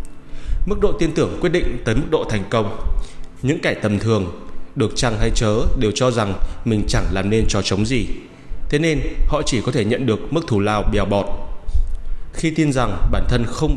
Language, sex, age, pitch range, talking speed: Vietnamese, male, 20-39, 95-125 Hz, 205 wpm